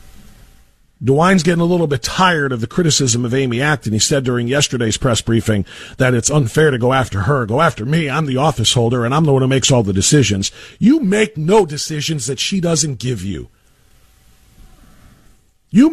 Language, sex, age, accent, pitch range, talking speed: English, male, 50-69, American, 140-215 Hz, 190 wpm